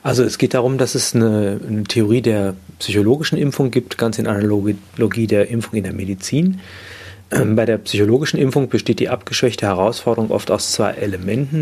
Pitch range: 100-120 Hz